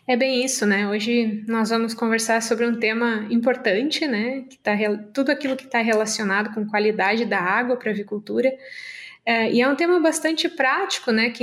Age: 20-39